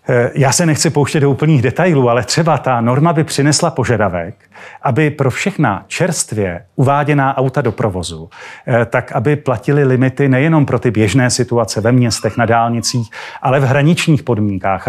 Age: 40-59